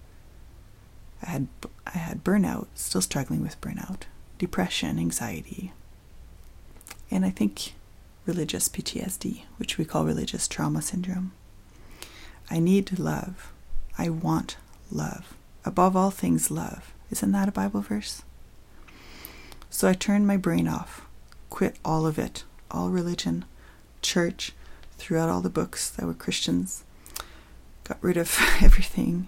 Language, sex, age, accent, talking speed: English, female, 30-49, American, 125 wpm